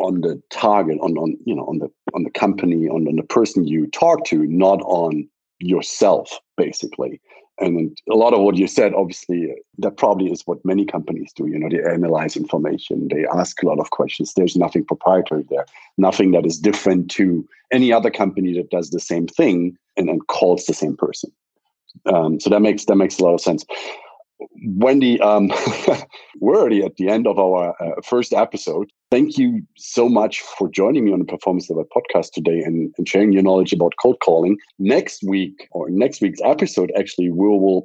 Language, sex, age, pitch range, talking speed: English, male, 50-69, 95-135 Hz, 195 wpm